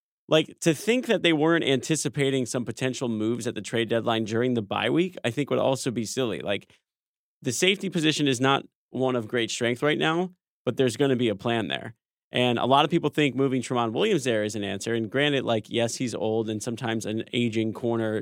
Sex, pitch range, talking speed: male, 115-155 Hz, 225 wpm